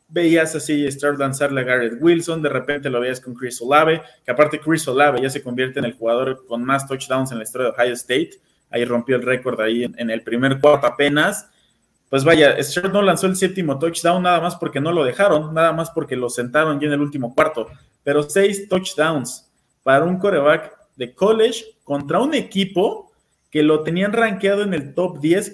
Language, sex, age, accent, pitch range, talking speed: Spanish, male, 20-39, Mexican, 130-170 Hz, 205 wpm